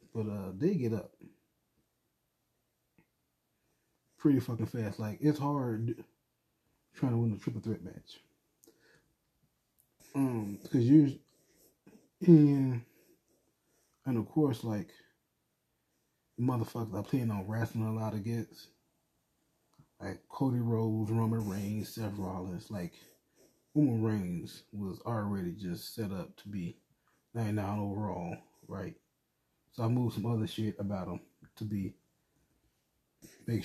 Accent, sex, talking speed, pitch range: American, male, 115 wpm, 105-120 Hz